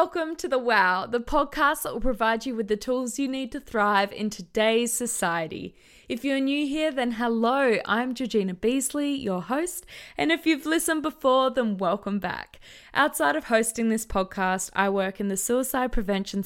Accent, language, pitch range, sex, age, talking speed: Australian, English, 195-265 Hz, female, 10-29, 180 wpm